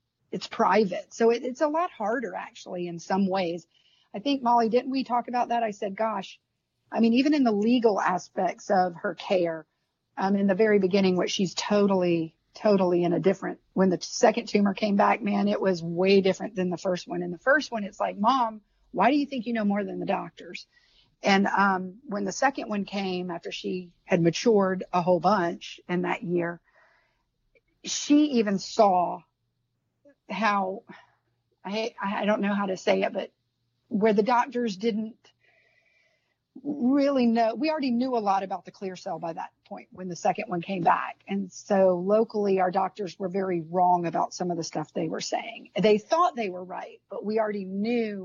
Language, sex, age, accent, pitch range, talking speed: English, female, 50-69, American, 180-225 Hz, 195 wpm